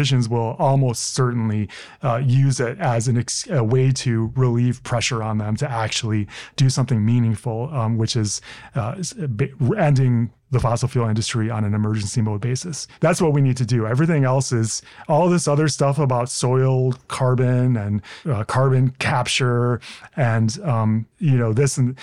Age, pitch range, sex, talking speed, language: 30-49, 115-140 Hz, male, 160 wpm, English